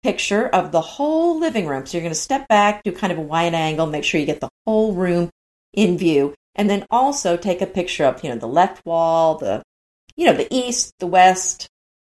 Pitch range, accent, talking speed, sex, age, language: 170-220 Hz, American, 230 wpm, female, 50-69, English